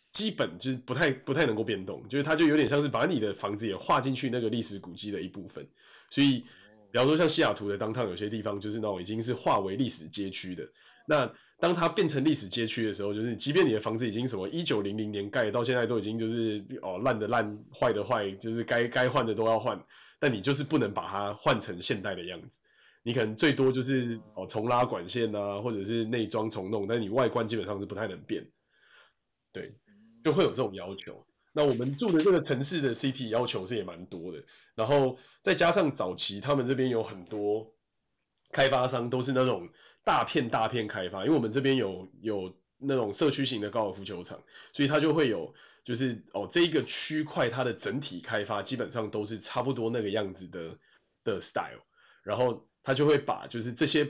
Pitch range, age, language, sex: 105-135 Hz, 20-39, Chinese, male